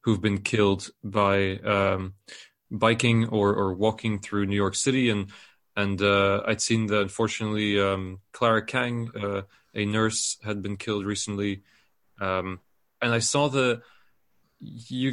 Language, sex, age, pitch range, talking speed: English, male, 20-39, 100-120 Hz, 145 wpm